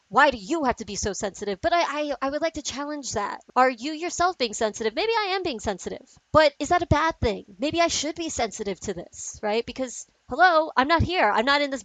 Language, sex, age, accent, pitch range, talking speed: English, female, 30-49, American, 210-270 Hz, 255 wpm